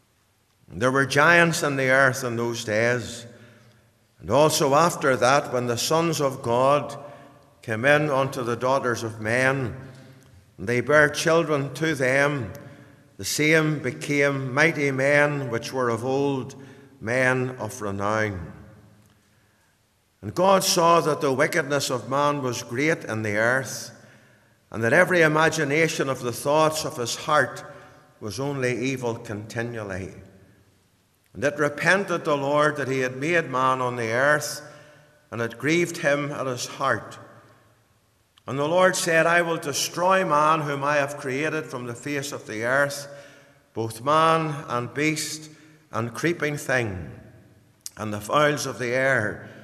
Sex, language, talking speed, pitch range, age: male, English, 145 wpm, 115-145 Hz, 60-79